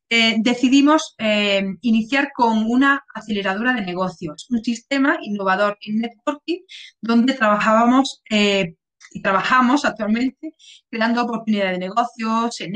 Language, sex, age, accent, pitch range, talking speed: Spanish, female, 20-39, Spanish, 195-235 Hz, 115 wpm